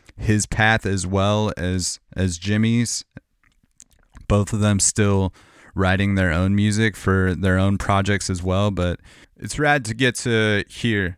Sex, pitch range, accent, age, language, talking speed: male, 90-110 Hz, American, 30-49, English, 150 wpm